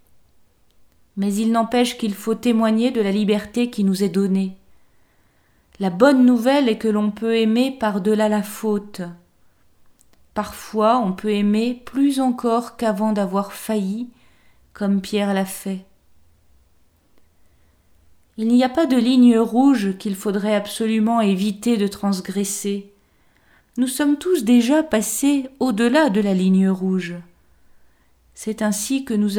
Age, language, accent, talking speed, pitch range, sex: 40-59, French, French, 135 wpm, 200-235 Hz, female